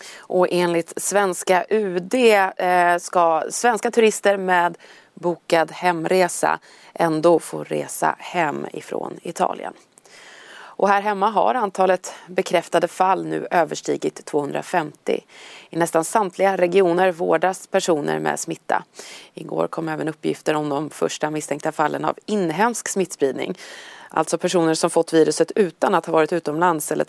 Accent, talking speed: native, 130 wpm